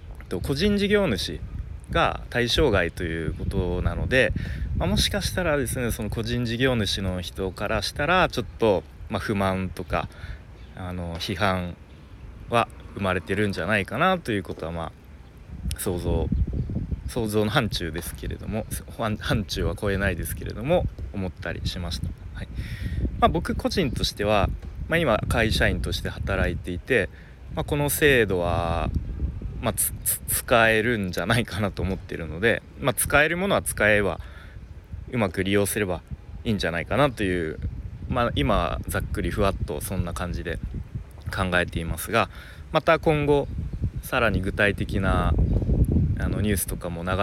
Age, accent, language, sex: 30-49, native, Japanese, male